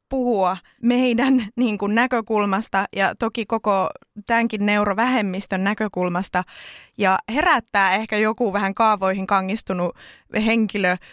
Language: Finnish